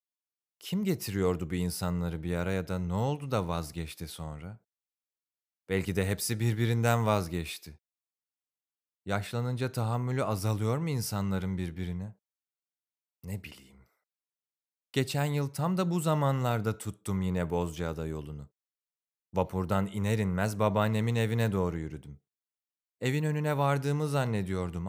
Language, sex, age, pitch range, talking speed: Turkish, male, 30-49, 85-125 Hz, 110 wpm